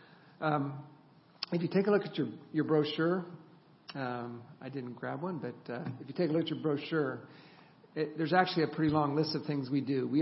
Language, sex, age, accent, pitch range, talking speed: English, male, 50-69, American, 135-160 Hz, 225 wpm